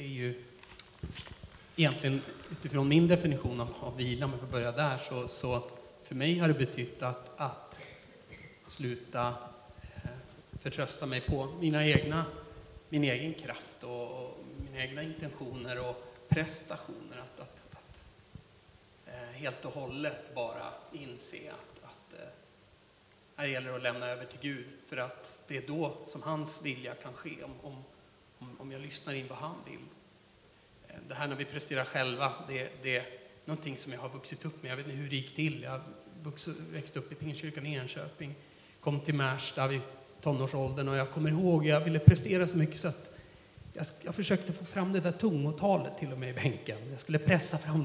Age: 30-49